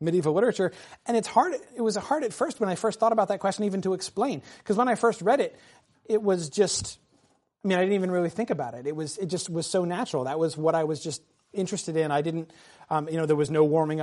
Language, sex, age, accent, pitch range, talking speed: English, male, 30-49, American, 155-200 Hz, 265 wpm